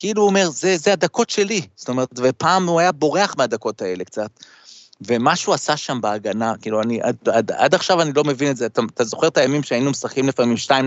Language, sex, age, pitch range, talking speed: Hebrew, male, 30-49, 125-165 Hz, 210 wpm